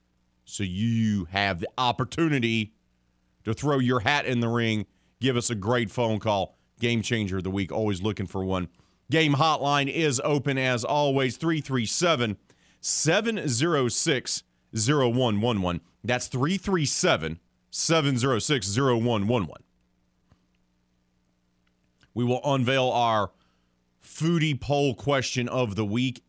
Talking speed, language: 105 wpm, English